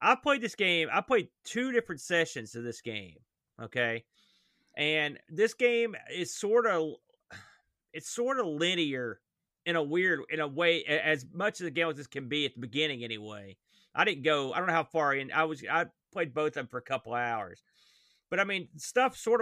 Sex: male